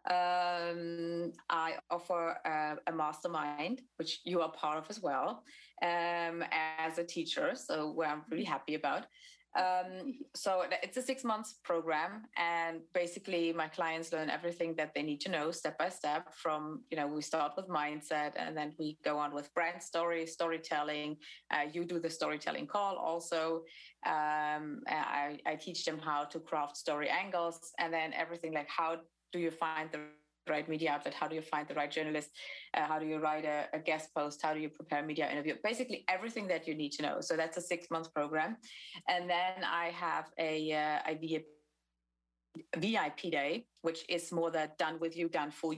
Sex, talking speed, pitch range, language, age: female, 185 wpm, 150-170 Hz, English, 20-39